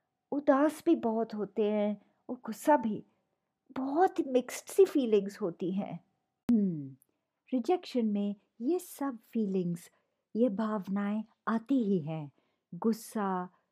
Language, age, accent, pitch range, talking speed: Hindi, 50-69, native, 195-275 Hz, 115 wpm